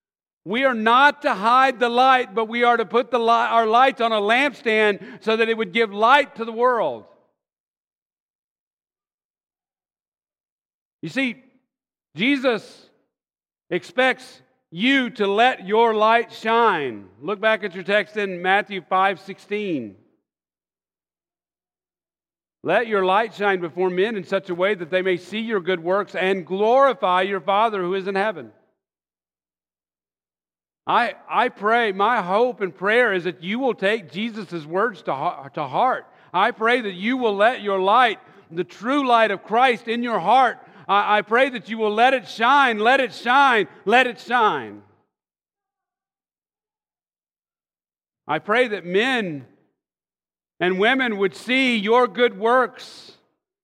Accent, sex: American, male